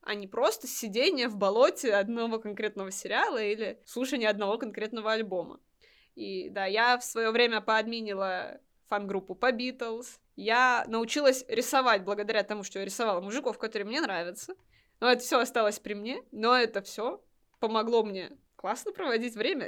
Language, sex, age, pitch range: Russian, female, 20-39, 210-250 Hz